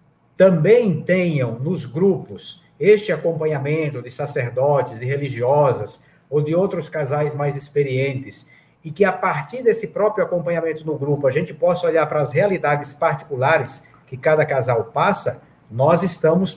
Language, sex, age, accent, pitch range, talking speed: Portuguese, male, 50-69, Brazilian, 145-180 Hz, 140 wpm